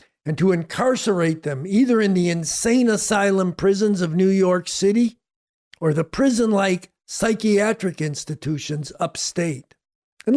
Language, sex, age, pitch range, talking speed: English, male, 50-69, 180-240 Hz, 120 wpm